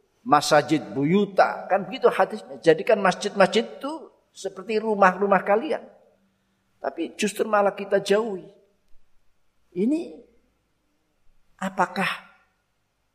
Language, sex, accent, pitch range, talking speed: Indonesian, male, native, 130-190 Hz, 80 wpm